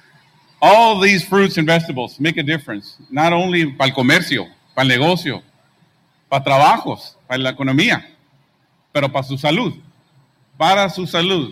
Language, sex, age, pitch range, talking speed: English, male, 50-69, 140-170 Hz, 130 wpm